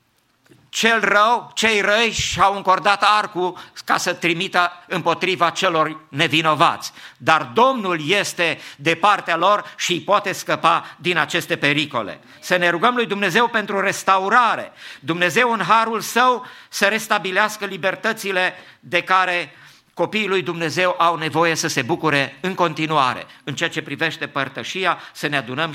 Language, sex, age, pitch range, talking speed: English, male, 50-69, 130-180 Hz, 140 wpm